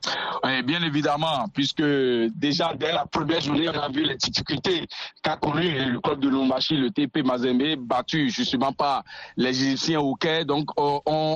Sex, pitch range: male, 140-175 Hz